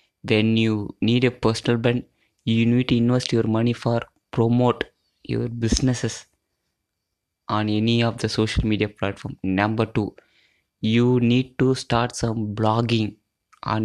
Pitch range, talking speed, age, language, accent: 110-125 Hz, 140 wpm, 20-39, English, Indian